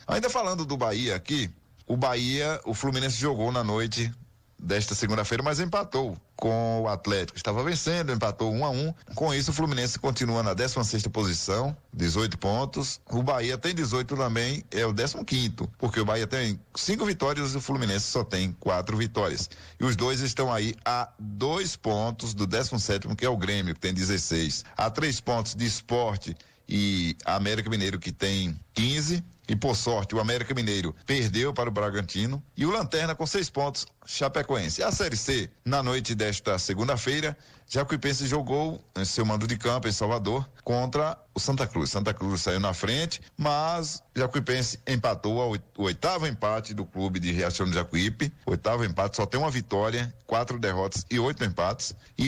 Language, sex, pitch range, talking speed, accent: Portuguese, male, 105-135 Hz, 170 wpm, Brazilian